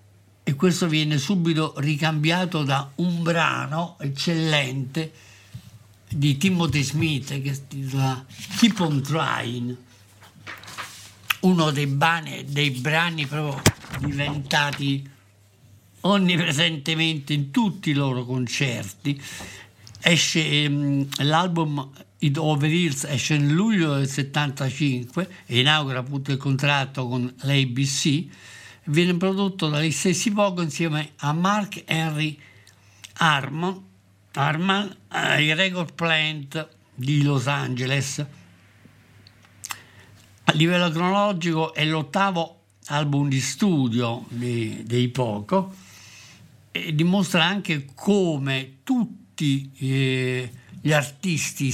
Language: Italian